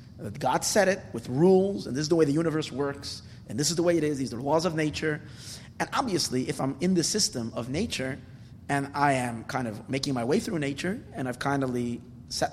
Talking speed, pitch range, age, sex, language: 240 wpm, 120-155 Hz, 30-49, male, English